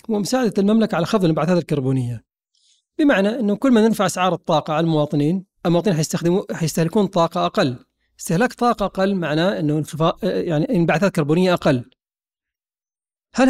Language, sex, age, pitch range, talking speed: Arabic, male, 40-59, 155-200 Hz, 135 wpm